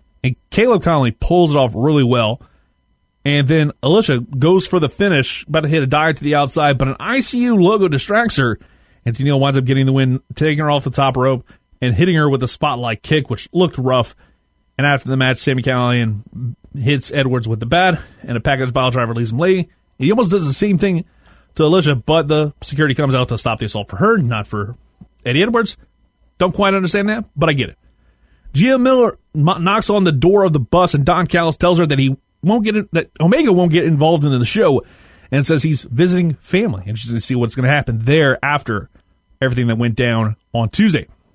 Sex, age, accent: male, 30-49, American